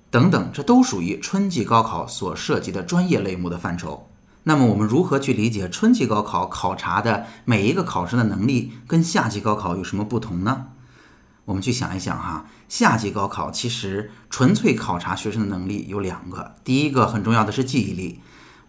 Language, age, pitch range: Chinese, 30-49, 100-125 Hz